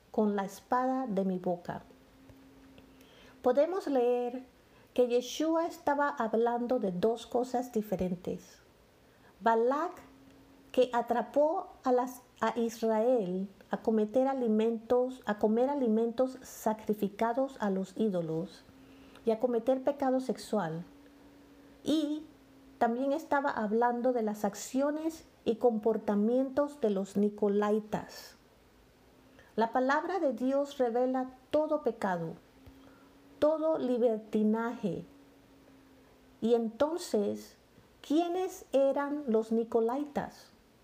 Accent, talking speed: American, 90 wpm